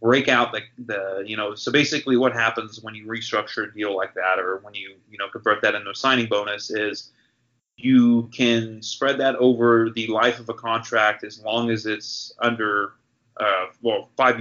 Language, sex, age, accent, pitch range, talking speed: English, male, 30-49, American, 105-120 Hz, 195 wpm